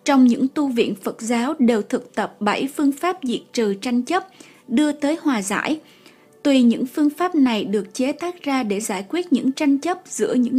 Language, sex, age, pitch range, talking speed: Vietnamese, female, 20-39, 230-290 Hz, 210 wpm